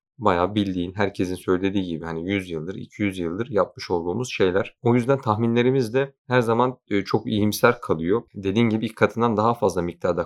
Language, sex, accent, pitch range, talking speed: Turkish, male, native, 95-120 Hz, 165 wpm